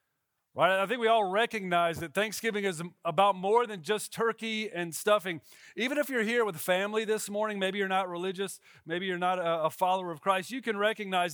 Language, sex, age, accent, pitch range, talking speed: English, male, 40-59, American, 165-205 Hz, 200 wpm